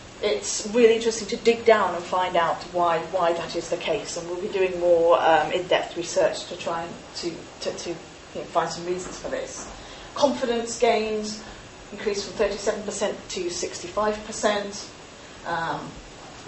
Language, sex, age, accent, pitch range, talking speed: English, female, 30-49, British, 185-235 Hz, 150 wpm